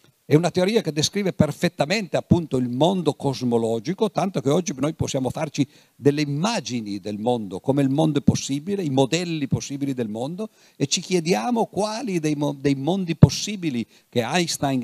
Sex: male